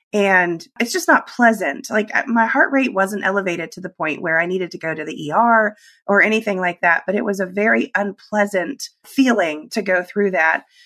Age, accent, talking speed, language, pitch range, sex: 30-49, American, 205 wpm, English, 180-245 Hz, female